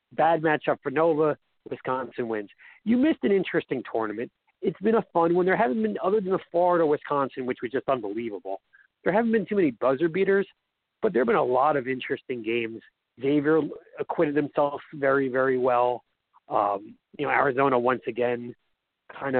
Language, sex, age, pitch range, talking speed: English, male, 40-59, 140-220 Hz, 175 wpm